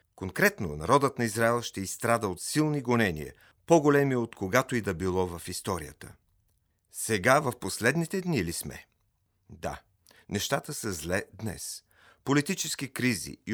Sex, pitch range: male, 100-135 Hz